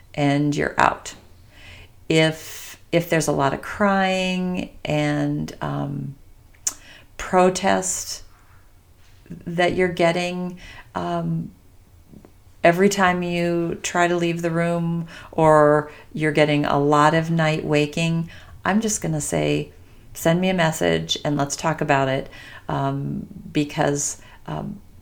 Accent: American